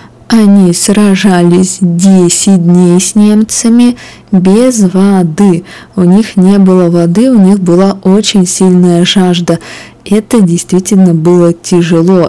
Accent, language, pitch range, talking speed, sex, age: native, Russian, 170-200 Hz, 110 wpm, female, 20-39